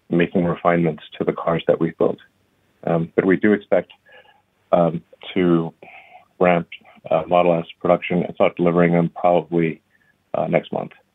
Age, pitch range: 40-59, 85-100 Hz